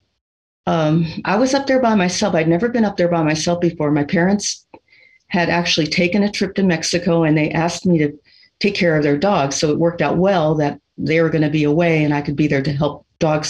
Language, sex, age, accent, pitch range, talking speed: English, female, 50-69, American, 145-180 Hz, 240 wpm